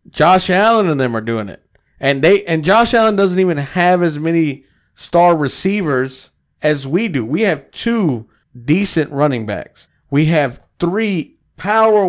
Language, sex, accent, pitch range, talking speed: English, male, American, 125-180 Hz, 160 wpm